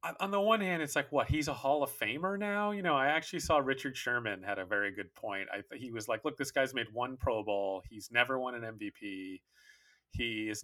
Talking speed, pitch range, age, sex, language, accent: 245 wpm, 115-155 Hz, 30-49, male, English, American